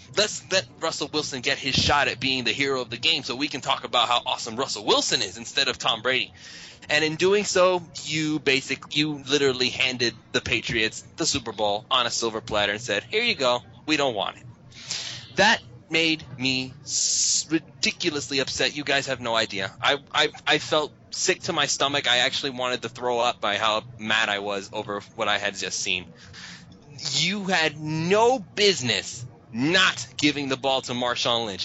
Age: 20-39